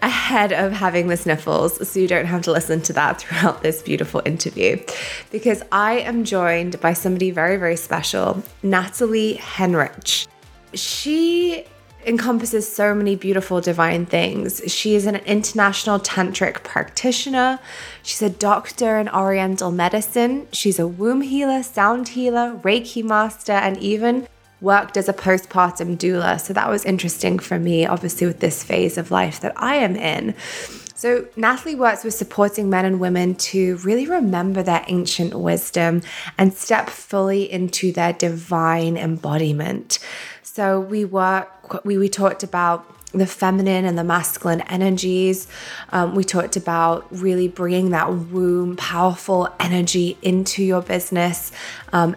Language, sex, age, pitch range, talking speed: English, female, 20-39, 175-210 Hz, 145 wpm